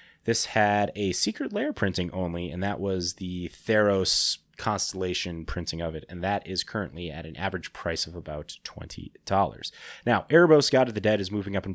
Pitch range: 90-105 Hz